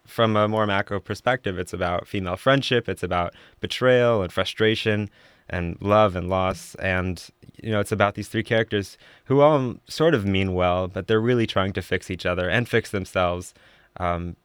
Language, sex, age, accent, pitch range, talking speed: English, male, 20-39, American, 90-110 Hz, 185 wpm